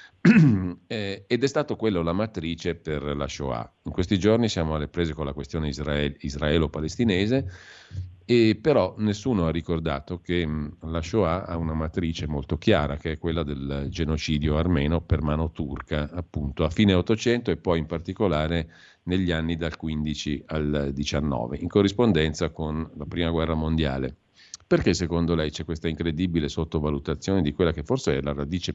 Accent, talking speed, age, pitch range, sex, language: native, 155 wpm, 50-69, 75-95 Hz, male, Italian